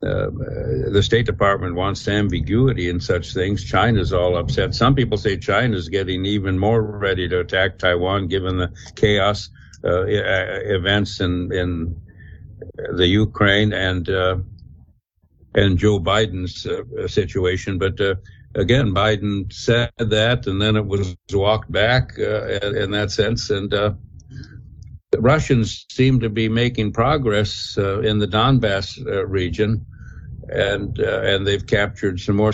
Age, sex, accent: 60-79, male, American